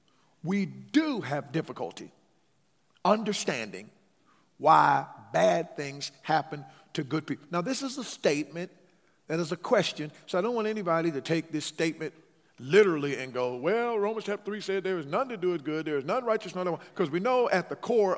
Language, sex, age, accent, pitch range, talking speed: English, male, 50-69, American, 145-185 Hz, 190 wpm